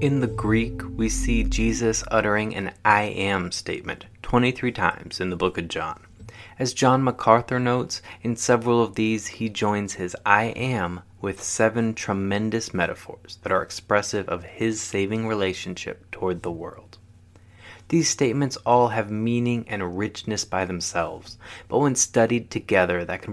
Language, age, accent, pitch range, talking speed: English, 20-39, American, 95-115 Hz, 155 wpm